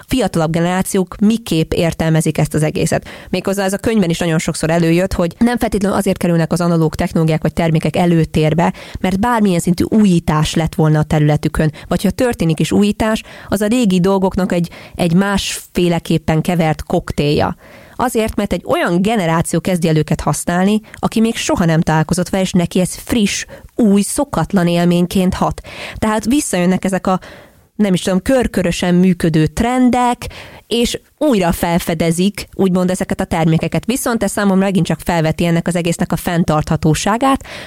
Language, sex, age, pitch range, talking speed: English, female, 20-39, 165-205 Hz, 155 wpm